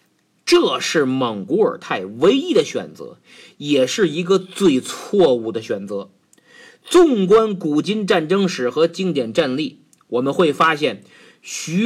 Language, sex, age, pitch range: Chinese, male, 50-69, 175-275 Hz